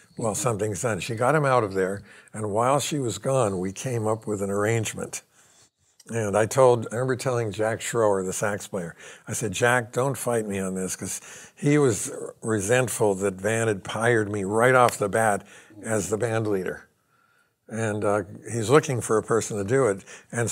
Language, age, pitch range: English, 60-79, 105-130 Hz